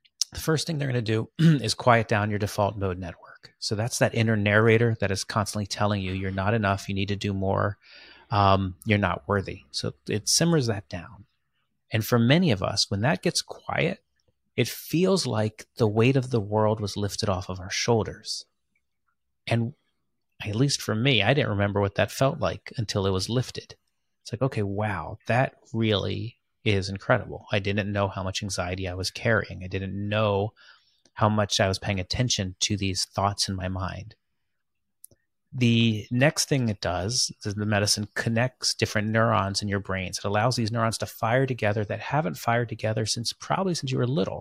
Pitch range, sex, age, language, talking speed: 100-125 Hz, male, 30-49, English, 195 wpm